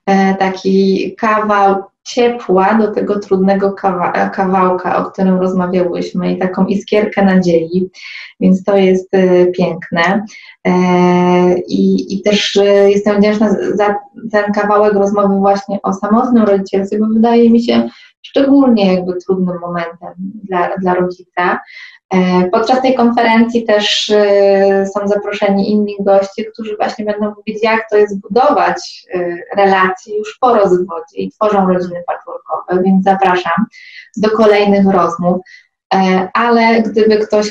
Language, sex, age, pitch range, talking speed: Polish, female, 20-39, 185-210 Hz, 120 wpm